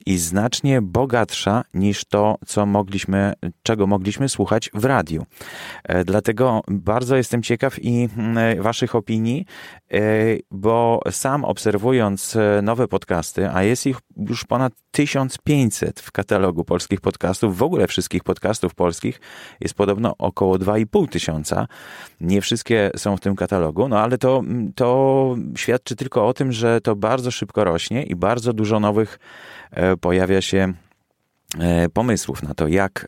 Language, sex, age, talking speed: Polish, male, 30-49, 130 wpm